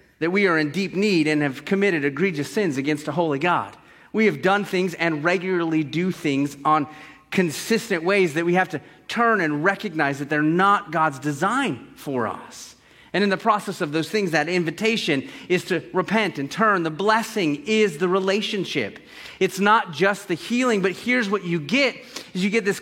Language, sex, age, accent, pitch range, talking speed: English, male, 30-49, American, 140-195 Hz, 190 wpm